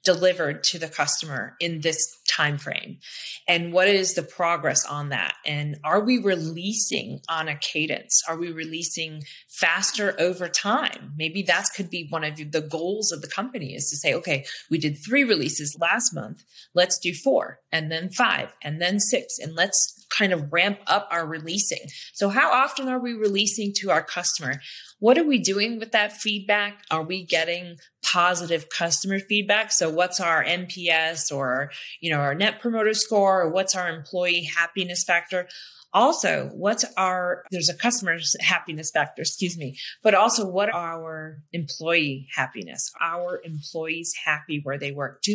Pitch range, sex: 160-200 Hz, female